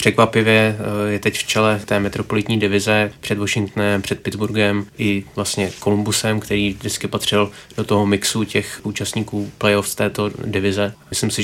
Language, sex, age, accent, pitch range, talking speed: Czech, male, 20-39, native, 100-110 Hz, 145 wpm